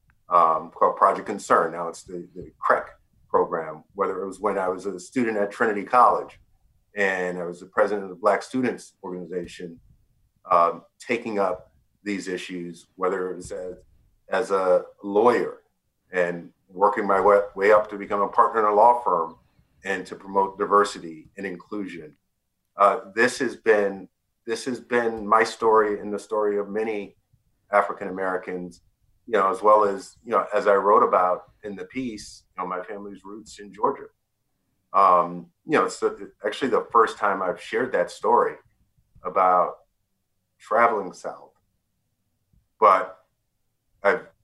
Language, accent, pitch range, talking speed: English, American, 90-115 Hz, 155 wpm